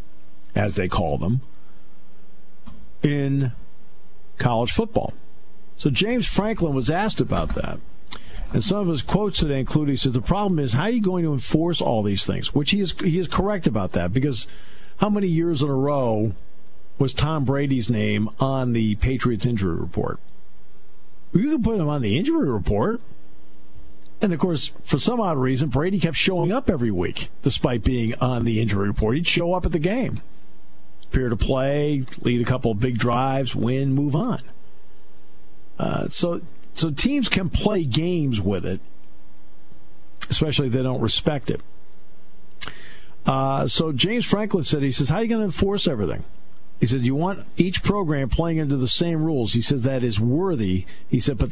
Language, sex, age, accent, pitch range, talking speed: English, male, 50-69, American, 120-175 Hz, 175 wpm